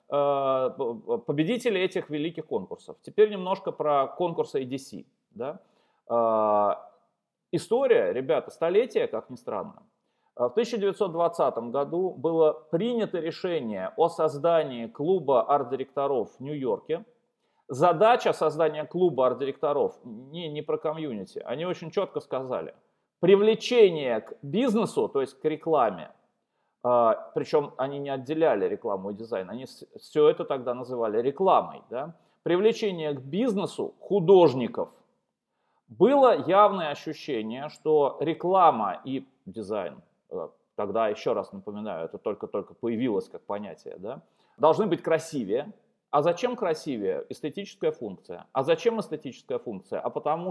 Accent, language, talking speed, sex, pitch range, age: native, Russian, 110 wpm, male, 150-235 Hz, 30-49